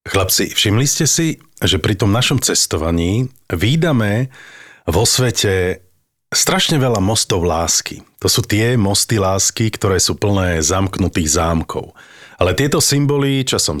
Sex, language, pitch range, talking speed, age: male, Slovak, 90-130 Hz, 130 wpm, 40-59